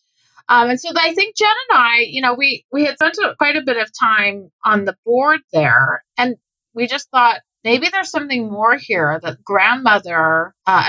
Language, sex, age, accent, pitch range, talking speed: English, female, 30-49, American, 185-245 Hz, 195 wpm